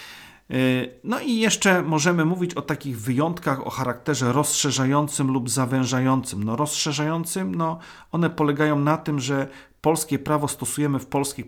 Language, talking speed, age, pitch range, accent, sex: Polish, 130 wpm, 40-59, 130-160 Hz, native, male